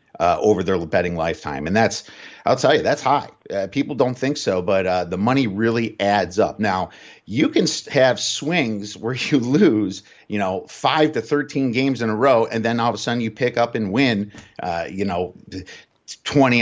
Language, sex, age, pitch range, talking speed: English, male, 50-69, 105-135 Hz, 200 wpm